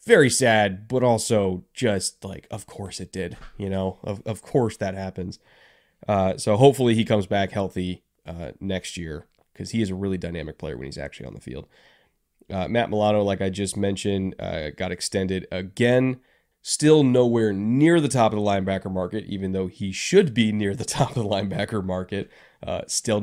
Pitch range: 95-125 Hz